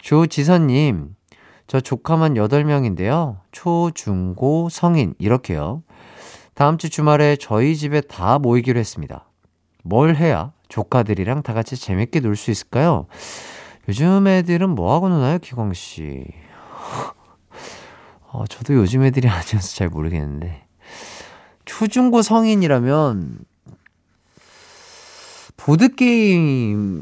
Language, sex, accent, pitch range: Korean, male, native, 105-165 Hz